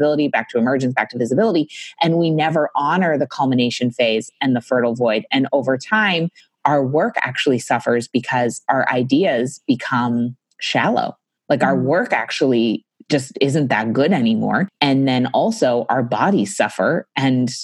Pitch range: 125-160 Hz